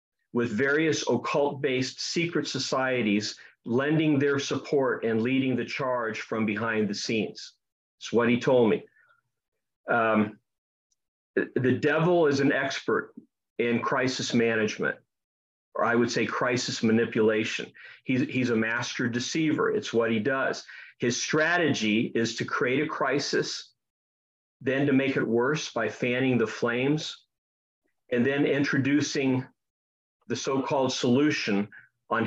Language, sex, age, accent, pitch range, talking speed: English, male, 40-59, American, 115-140 Hz, 125 wpm